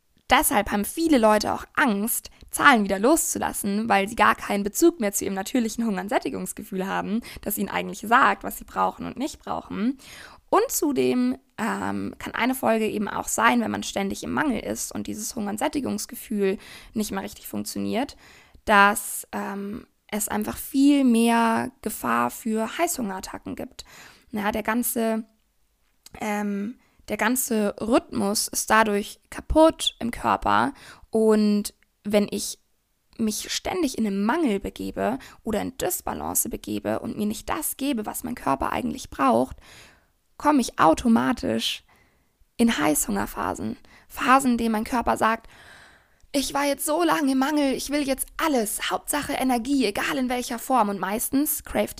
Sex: female